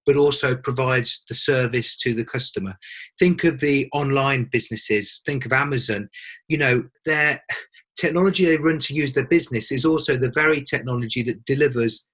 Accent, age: British, 40-59